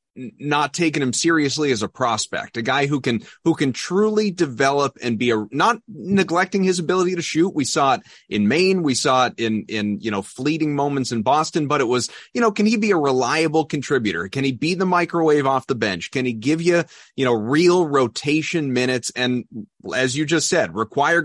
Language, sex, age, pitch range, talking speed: English, male, 30-49, 125-170 Hz, 210 wpm